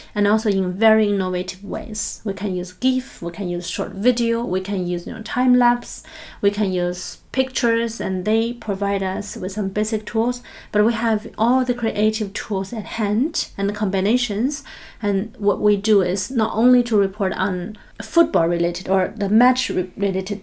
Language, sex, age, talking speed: English, female, 30-49, 175 wpm